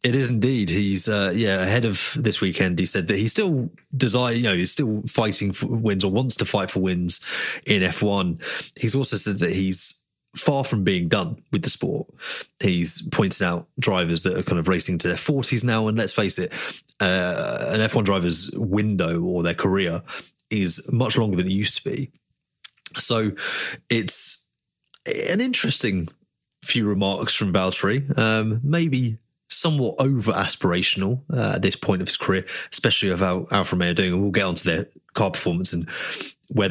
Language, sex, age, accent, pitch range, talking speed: English, male, 30-49, British, 95-130 Hz, 180 wpm